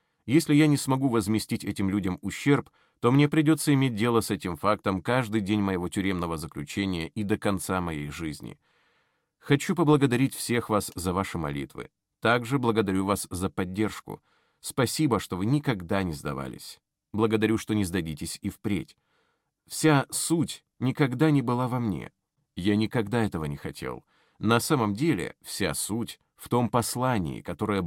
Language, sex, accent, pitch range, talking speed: Russian, male, native, 95-130 Hz, 155 wpm